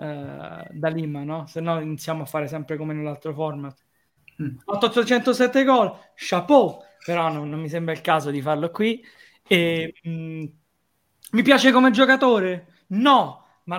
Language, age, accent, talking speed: Italian, 20-39, native, 140 wpm